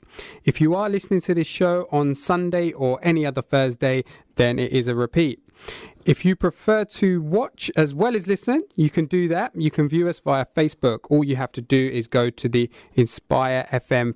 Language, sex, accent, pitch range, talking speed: English, male, British, 120-170 Hz, 205 wpm